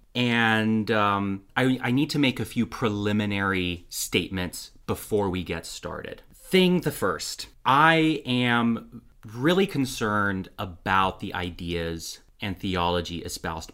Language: English